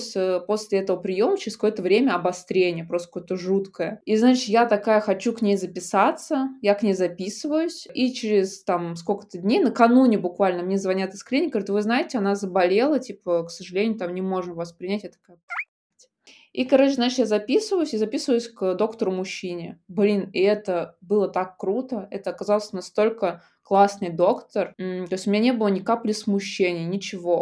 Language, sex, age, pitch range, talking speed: Russian, female, 20-39, 180-220 Hz, 175 wpm